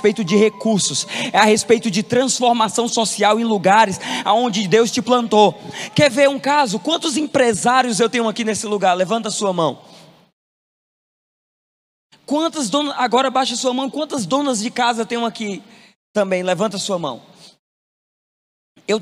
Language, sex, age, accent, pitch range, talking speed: Portuguese, male, 20-39, Brazilian, 235-290 Hz, 155 wpm